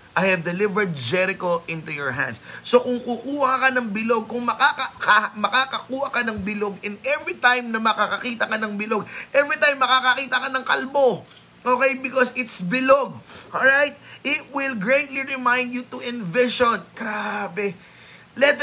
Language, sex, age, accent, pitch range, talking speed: Filipino, male, 30-49, native, 185-250 Hz, 160 wpm